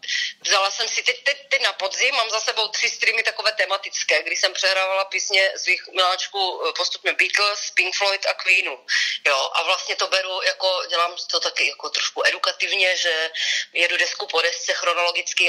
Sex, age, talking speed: female, 30-49, 175 wpm